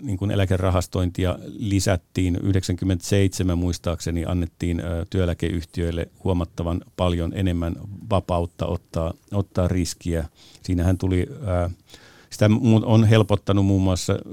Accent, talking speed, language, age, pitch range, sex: native, 90 wpm, Finnish, 50-69, 85-100 Hz, male